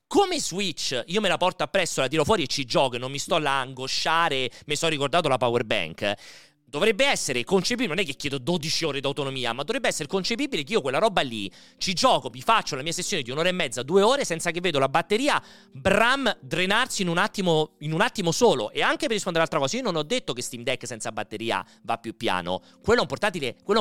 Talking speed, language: 235 wpm, Italian